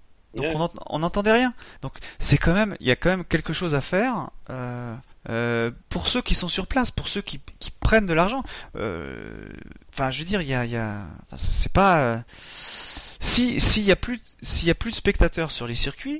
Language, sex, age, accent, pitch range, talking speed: French, male, 30-49, French, 115-160 Hz, 220 wpm